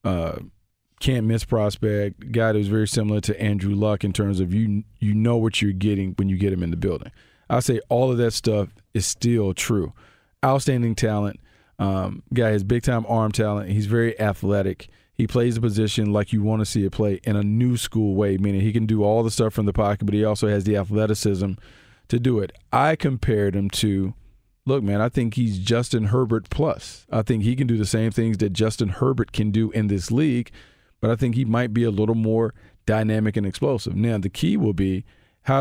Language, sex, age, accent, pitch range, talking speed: English, male, 40-59, American, 105-120 Hz, 215 wpm